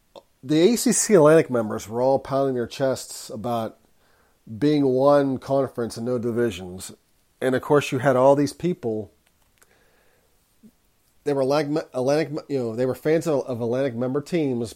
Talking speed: 150 wpm